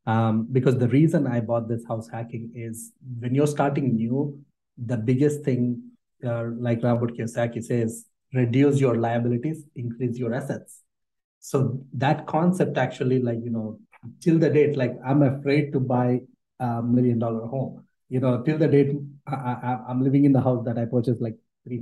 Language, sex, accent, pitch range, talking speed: English, male, Indian, 120-145 Hz, 170 wpm